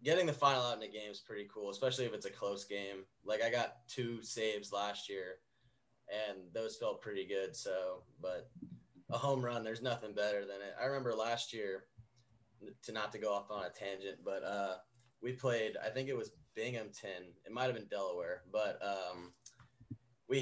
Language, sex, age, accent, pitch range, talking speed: English, male, 20-39, American, 105-130 Hz, 195 wpm